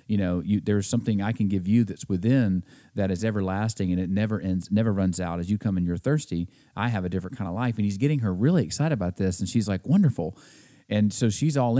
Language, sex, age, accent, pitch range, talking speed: English, male, 40-59, American, 95-120 Hz, 255 wpm